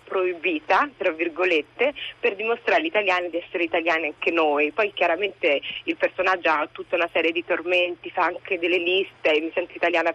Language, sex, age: Italian, female, 30-49